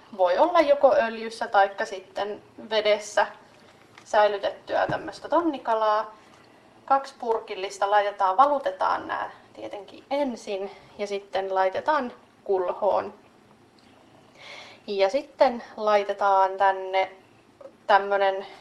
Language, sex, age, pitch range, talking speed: Finnish, female, 20-39, 195-225 Hz, 85 wpm